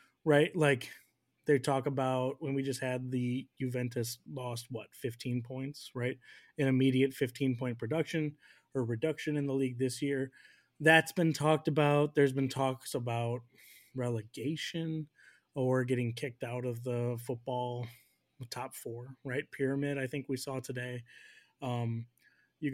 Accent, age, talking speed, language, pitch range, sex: American, 20-39, 145 wpm, English, 125-145 Hz, male